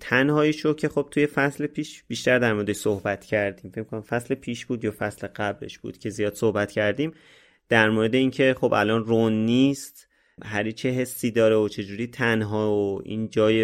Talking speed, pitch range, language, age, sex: 185 wpm, 105-145 Hz, Persian, 30-49, male